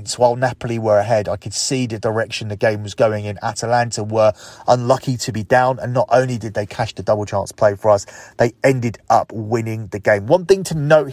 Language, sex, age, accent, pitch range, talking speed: English, male, 30-49, British, 110-130 Hz, 225 wpm